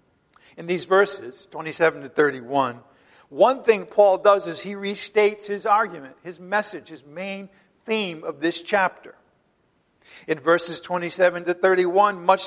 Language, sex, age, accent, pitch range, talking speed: English, male, 50-69, American, 170-205 Hz, 140 wpm